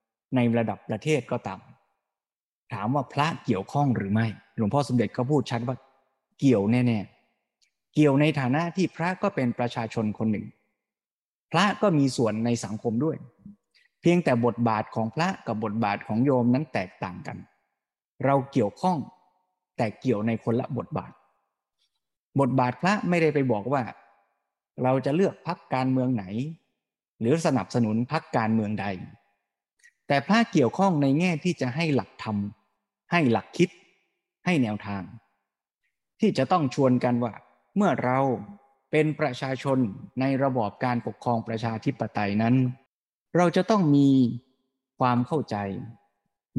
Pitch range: 115-150 Hz